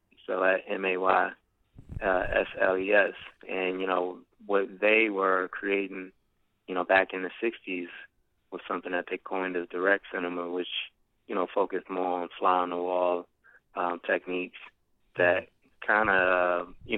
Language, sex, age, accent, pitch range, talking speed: English, male, 20-39, American, 90-95 Hz, 165 wpm